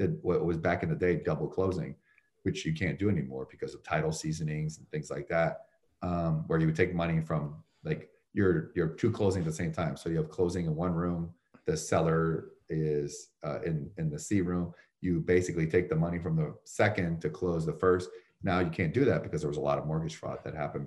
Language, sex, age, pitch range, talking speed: English, male, 30-49, 80-100 Hz, 230 wpm